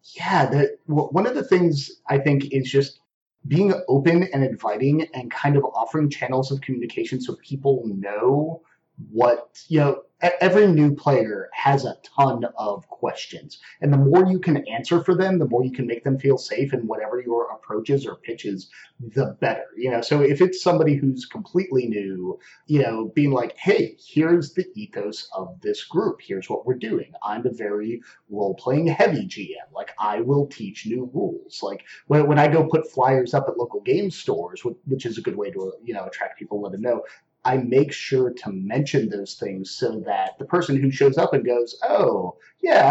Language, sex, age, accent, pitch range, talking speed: English, male, 30-49, American, 125-170 Hz, 195 wpm